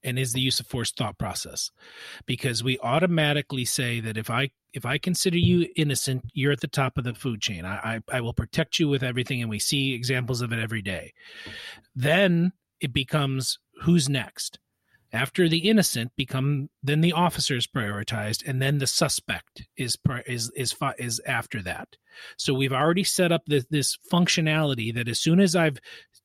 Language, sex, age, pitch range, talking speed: English, male, 40-59, 130-170 Hz, 185 wpm